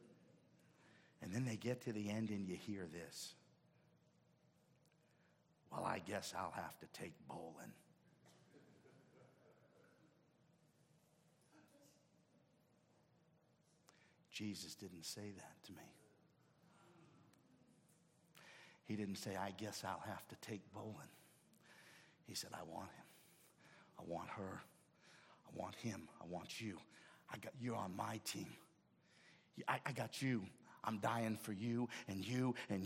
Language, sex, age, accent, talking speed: English, male, 60-79, American, 120 wpm